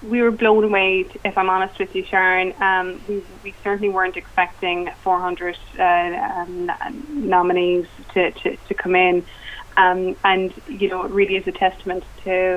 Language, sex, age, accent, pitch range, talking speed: English, female, 20-39, Irish, 185-200 Hz, 170 wpm